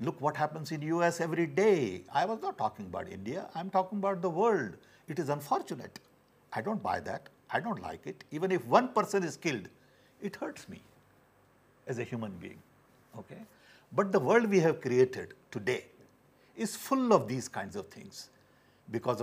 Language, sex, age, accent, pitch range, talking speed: English, male, 60-79, Indian, 125-170 Hz, 180 wpm